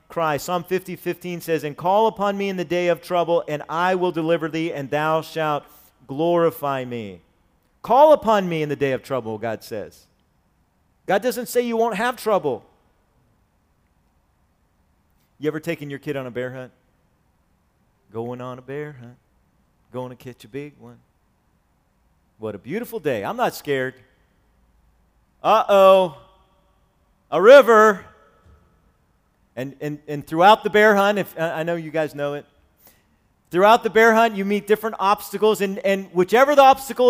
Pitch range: 125-200 Hz